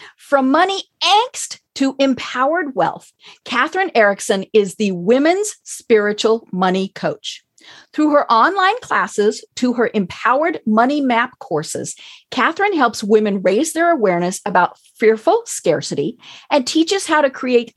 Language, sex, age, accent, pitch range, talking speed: English, female, 40-59, American, 210-320 Hz, 130 wpm